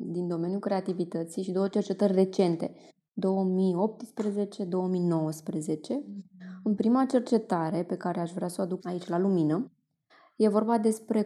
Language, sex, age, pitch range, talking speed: Romanian, female, 20-39, 180-220 Hz, 130 wpm